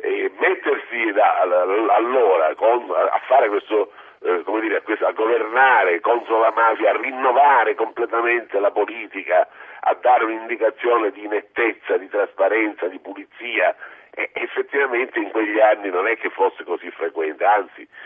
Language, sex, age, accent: Italian, male, 50-69, native